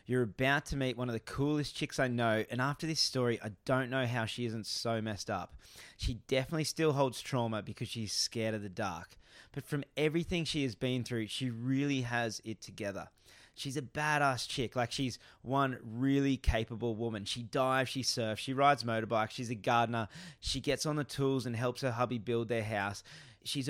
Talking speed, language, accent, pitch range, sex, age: 205 wpm, English, Australian, 115-135 Hz, male, 20-39